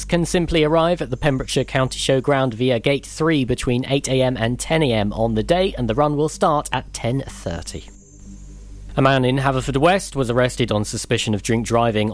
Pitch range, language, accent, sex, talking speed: 105-140 Hz, English, British, male, 185 wpm